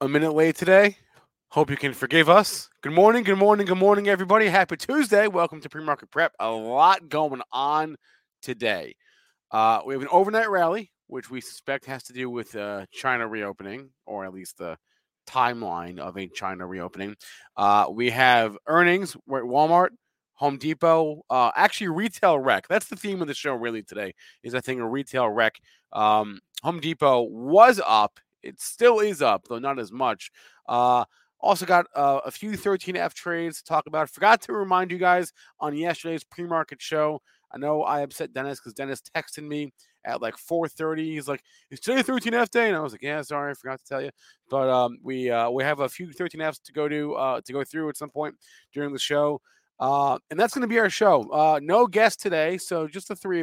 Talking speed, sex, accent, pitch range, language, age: 200 wpm, male, American, 130-180 Hz, English, 30-49